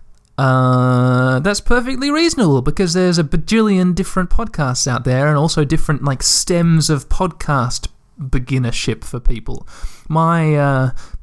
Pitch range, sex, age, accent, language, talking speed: 130-175 Hz, male, 20-39, Australian, English, 130 wpm